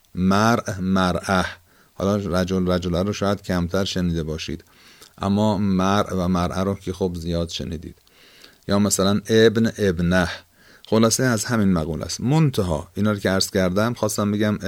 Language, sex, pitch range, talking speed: Persian, male, 90-105 Hz, 145 wpm